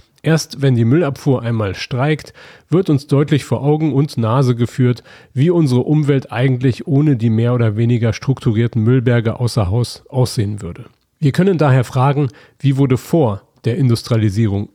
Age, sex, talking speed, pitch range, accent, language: 40-59, male, 155 wpm, 120-145 Hz, German, German